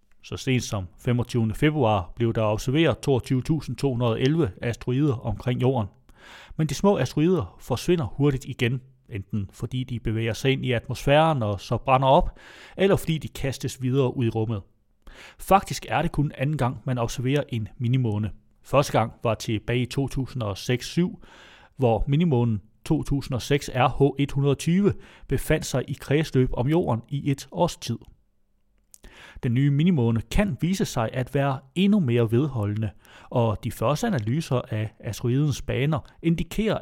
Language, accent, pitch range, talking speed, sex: Danish, native, 115-145 Hz, 145 wpm, male